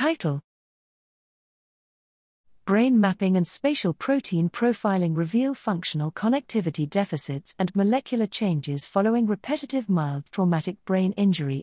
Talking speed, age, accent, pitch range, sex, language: 105 wpm, 40-59, British, 160-215 Hz, female, English